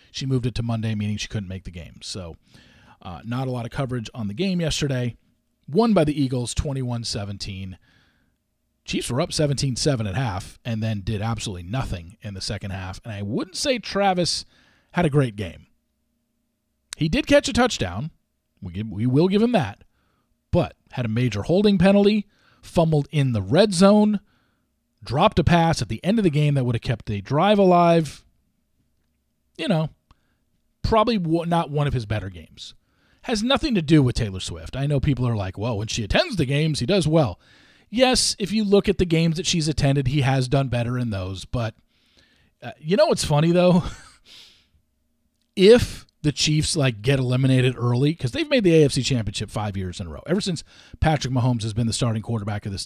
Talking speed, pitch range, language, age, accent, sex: 195 wpm, 110-165 Hz, English, 40-59, American, male